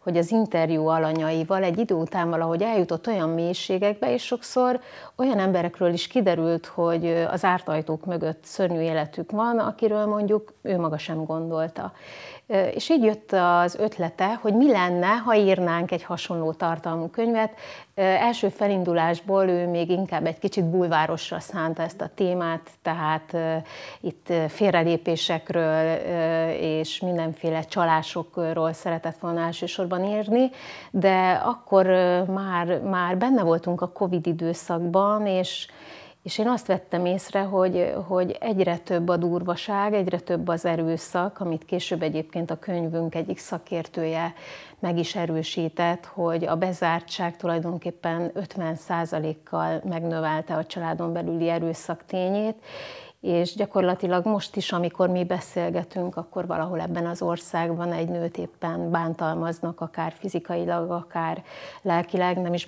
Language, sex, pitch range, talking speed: Hungarian, female, 165-190 Hz, 130 wpm